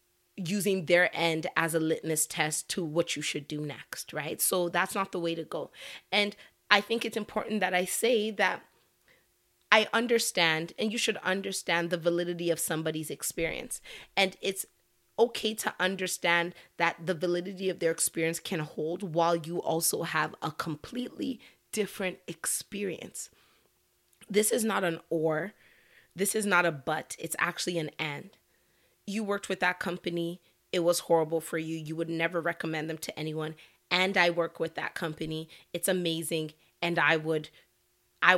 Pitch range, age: 160-190 Hz, 30-49